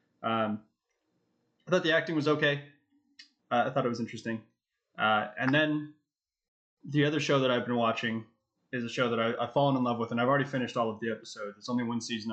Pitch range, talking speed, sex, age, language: 115-140 Hz, 215 wpm, male, 20-39, English